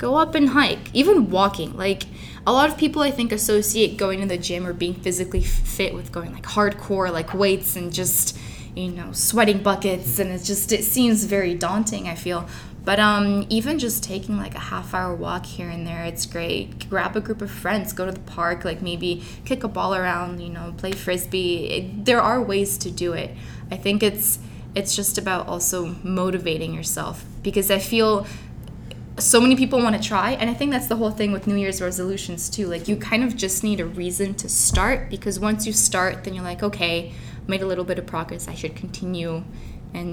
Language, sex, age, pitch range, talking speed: English, female, 20-39, 175-210 Hz, 210 wpm